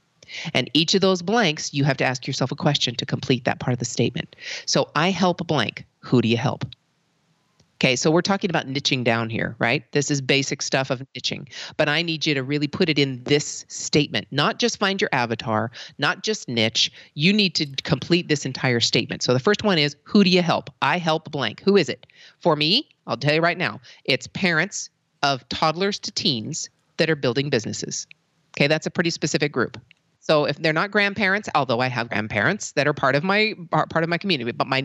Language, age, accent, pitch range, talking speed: English, 40-59, American, 135-175 Hz, 215 wpm